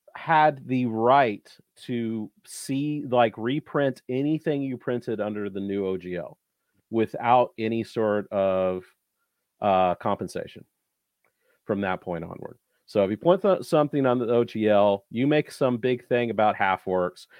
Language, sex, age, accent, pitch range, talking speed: English, male, 40-59, American, 100-125 Hz, 140 wpm